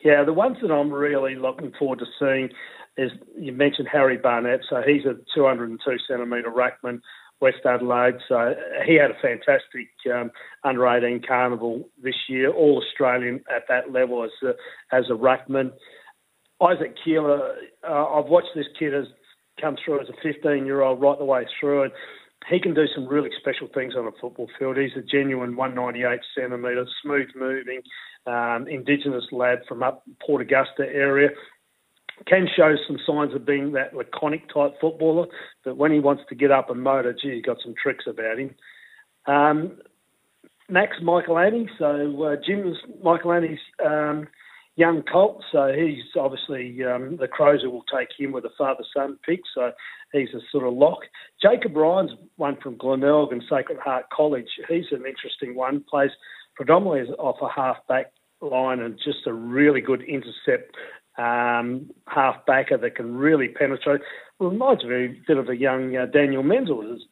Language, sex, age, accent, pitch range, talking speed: English, male, 40-59, Australian, 130-150 Hz, 165 wpm